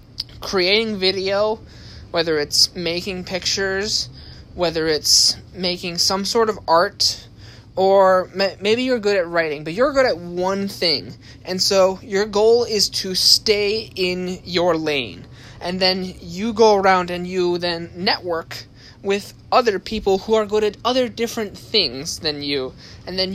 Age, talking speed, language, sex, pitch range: 20-39, 150 wpm, English, male, 155-195 Hz